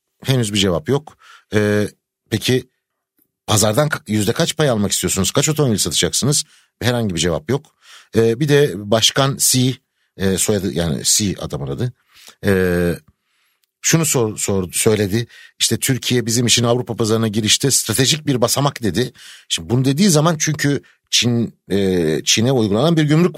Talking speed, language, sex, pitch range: 145 wpm, Turkish, male, 105-155 Hz